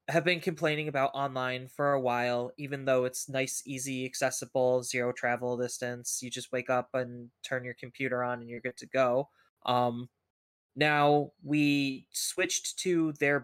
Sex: male